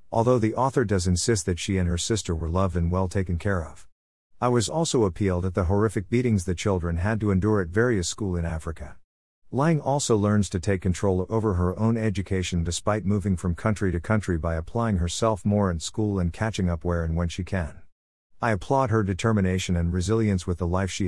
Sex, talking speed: male, 215 wpm